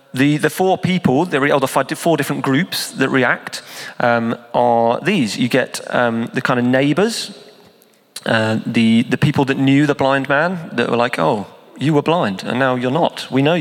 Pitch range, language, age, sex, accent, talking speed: 115-145 Hz, English, 30-49, male, British, 190 wpm